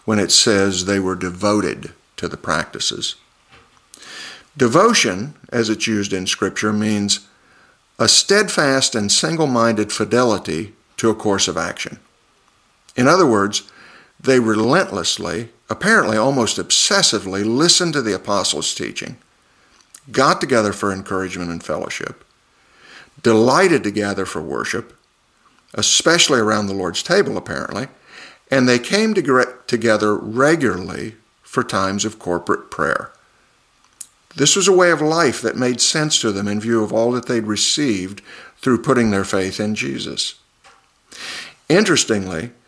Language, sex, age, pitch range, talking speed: English, male, 50-69, 100-125 Hz, 130 wpm